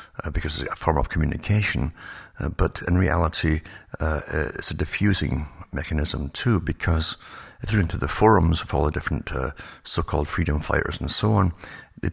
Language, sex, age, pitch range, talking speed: English, male, 60-79, 75-95 Hz, 175 wpm